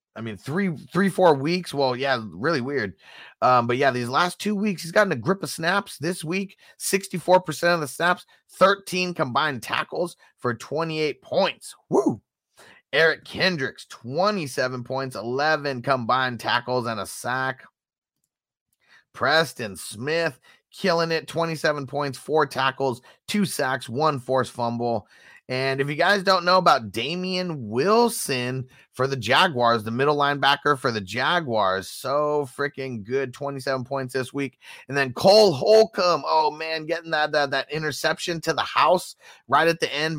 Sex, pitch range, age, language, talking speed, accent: male, 130-170 Hz, 30-49, English, 150 wpm, American